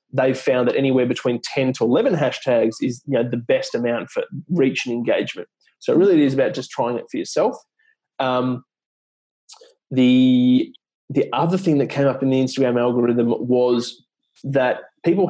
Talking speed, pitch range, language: 165 wpm, 125-170 Hz, English